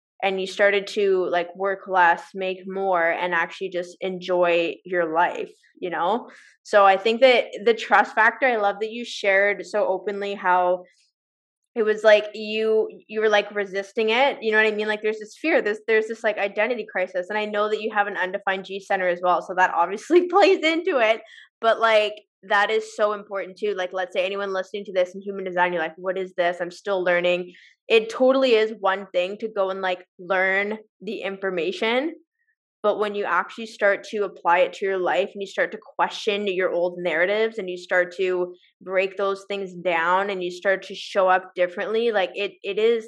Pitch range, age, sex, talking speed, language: 185-215 Hz, 20-39, female, 210 wpm, English